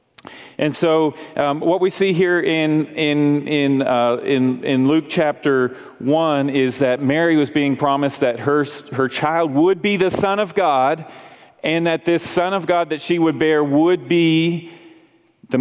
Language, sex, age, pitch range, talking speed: English, male, 40-59, 135-160 Hz, 160 wpm